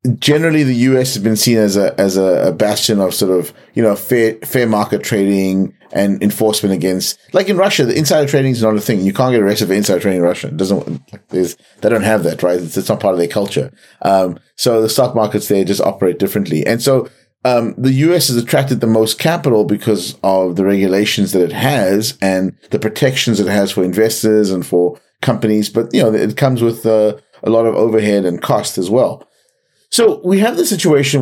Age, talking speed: 30-49, 215 wpm